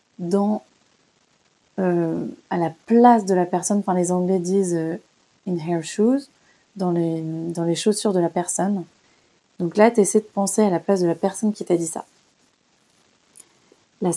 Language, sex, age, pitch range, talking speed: French, female, 30-49, 180-215 Hz, 175 wpm